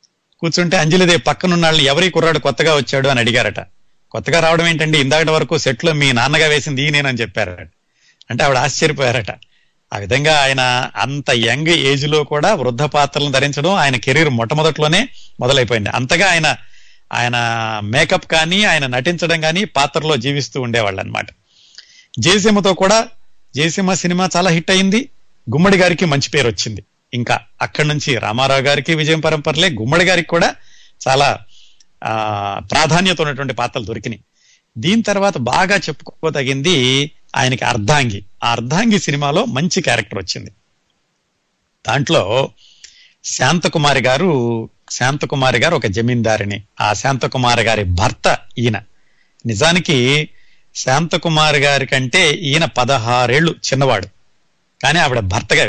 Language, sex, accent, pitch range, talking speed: Telugu, male, native, 120-165 Hz, 120 wpm